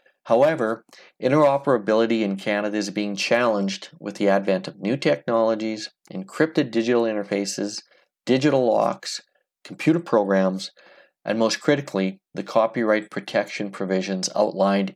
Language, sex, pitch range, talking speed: English, male, 100-115 Hz, 110 wpm